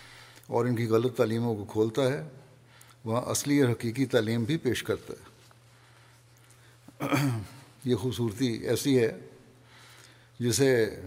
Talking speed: 115 wpm